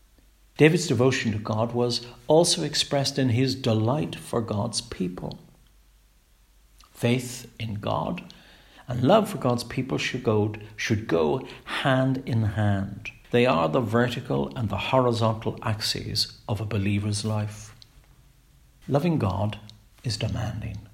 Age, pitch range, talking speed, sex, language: 60-79, 105-135 Hz, 125 wpm, male, English